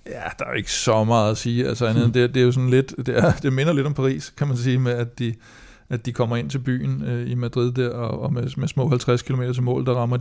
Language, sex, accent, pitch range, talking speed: Danish, male, native, 115-125 Hz, 280 wpm